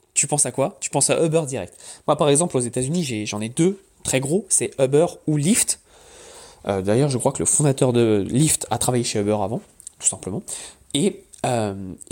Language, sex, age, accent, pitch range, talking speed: French, male, 20-39, French, 125-175 Hz, 210 wpm